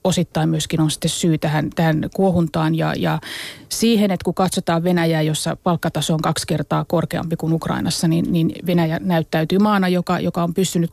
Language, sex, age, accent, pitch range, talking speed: Finnish, female, 30-49, native, 165-195 Hz, 175 wpm